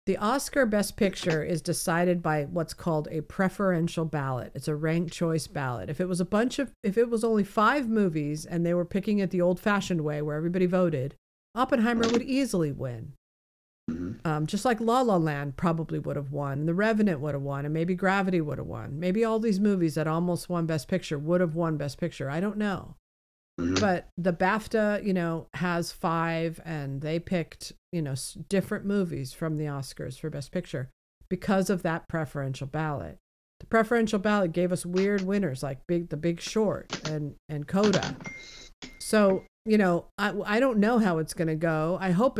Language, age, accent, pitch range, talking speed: English, 50-69, American, 155-200 Hz, 195 wpm